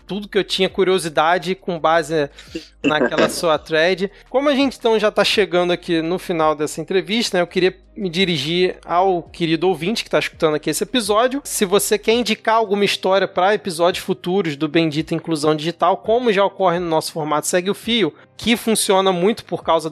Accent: Brazilian